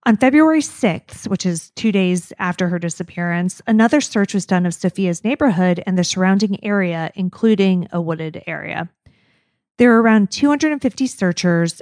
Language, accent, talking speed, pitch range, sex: English, American, 150 wpm, 180-220 Hz, female